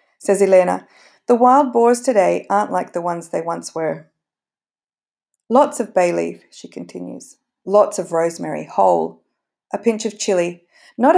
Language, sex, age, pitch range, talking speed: English, female, 40-59, 175-230 Hz, 150 wpm